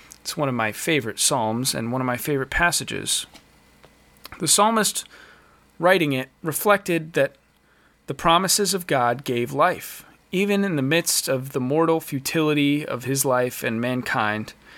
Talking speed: 150 wpm